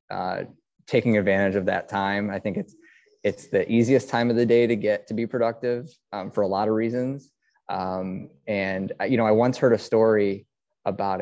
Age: 20-39